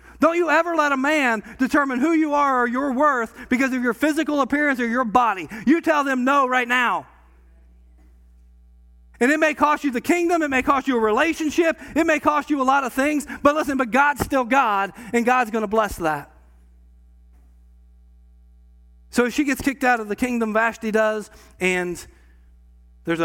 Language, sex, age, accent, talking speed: English, male, 40-59, American, 185 wpm